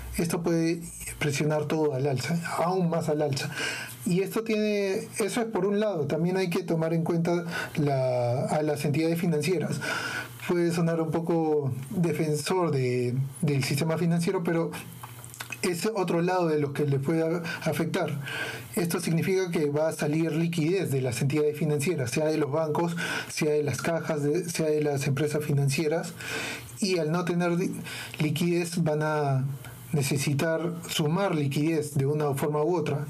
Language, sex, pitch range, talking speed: Spanish, male, 145-170 Hz, 160 wpm